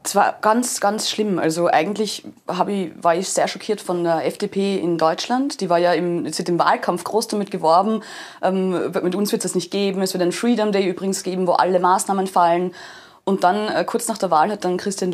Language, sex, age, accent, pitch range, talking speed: German, female, 20-39, German, 170-205 Hz, 220 wpm